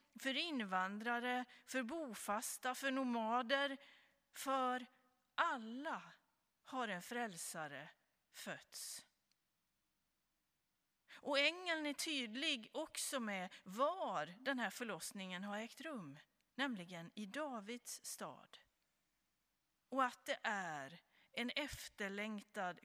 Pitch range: 190-265 Hz